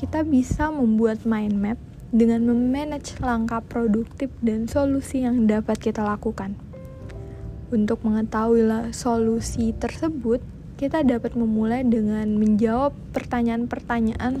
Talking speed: 105 wpm